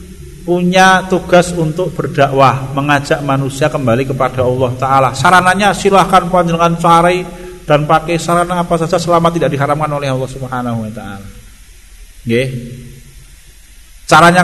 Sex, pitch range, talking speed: male, 130-170 Hz, 125 wpm